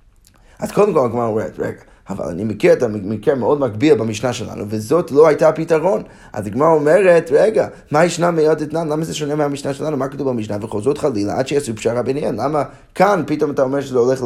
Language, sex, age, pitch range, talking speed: Hebrew, male, 20-39, 115-155 Hz, 200 wpm